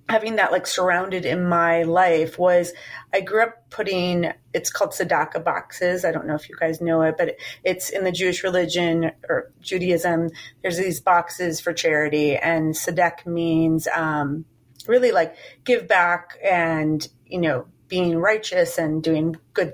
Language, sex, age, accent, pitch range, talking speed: English, female, 30-49, American, 165-200 Hz, 160 wpm